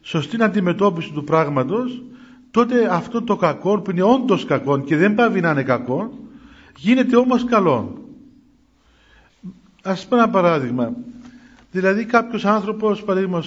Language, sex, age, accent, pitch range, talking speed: Greek, male, 40-59, native, 175-235 Hz, 135 wpm